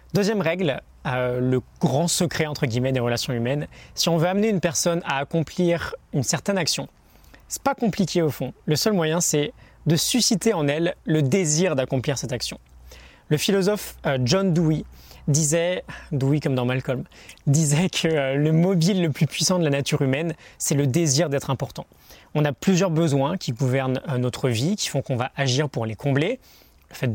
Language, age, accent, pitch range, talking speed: French, 20-39, French, 135-180 Hz, 190 wpm